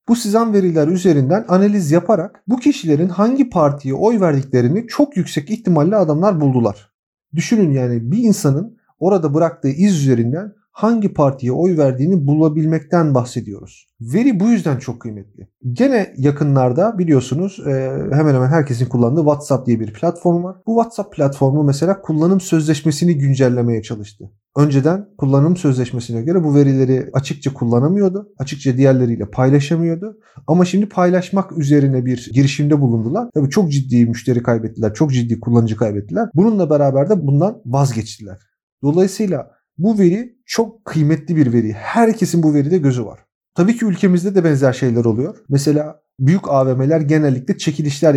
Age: 40-59